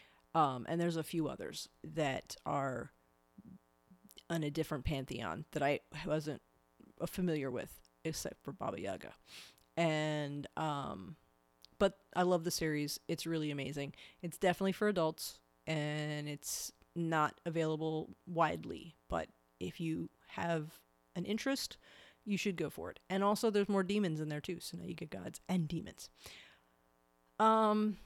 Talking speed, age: 145 wpm, 30-49